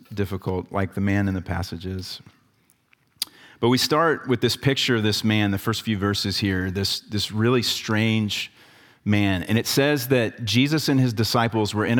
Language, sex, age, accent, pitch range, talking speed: English, male, 40-59, American, 105-125 Hz, 180 wpm